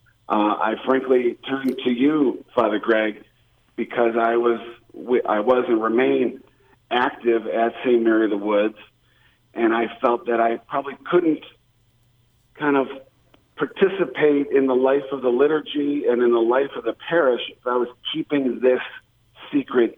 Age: 50-69